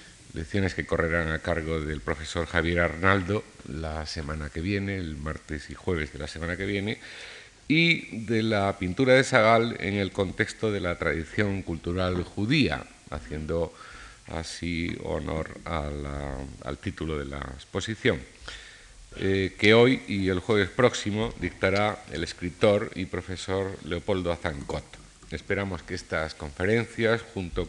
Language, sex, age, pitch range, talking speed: Spanish, male, 50-69, 80-100 Hz, 130 wpm